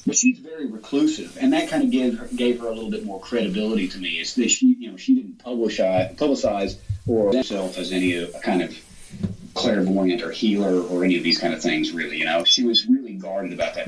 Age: 30-49